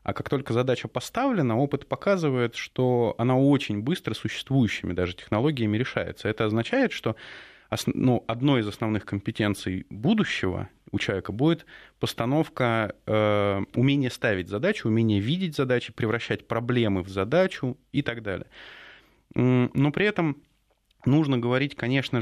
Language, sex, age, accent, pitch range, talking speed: Russian, male, 20-39, native, 105-130 Hz, 130 wpm